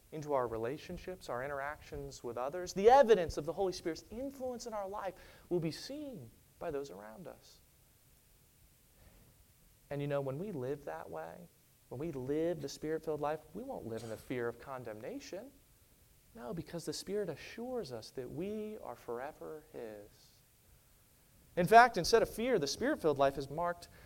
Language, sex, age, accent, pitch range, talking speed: English, male, 30-49, American, 135-225 Hz, 165 wpm